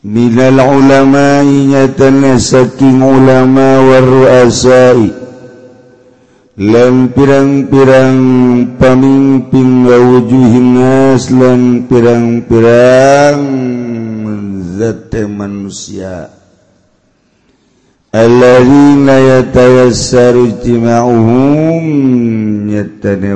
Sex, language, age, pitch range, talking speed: male, Indonesian, 50-69, 95-130 Hz, 35 wpm